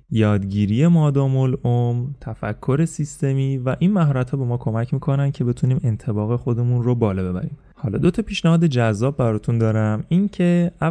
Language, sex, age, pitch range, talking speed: Persian, male, 20-39, 115-145 Hz, 150 wpm